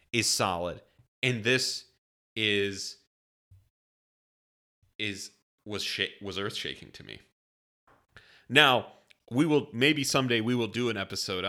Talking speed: 120 wpm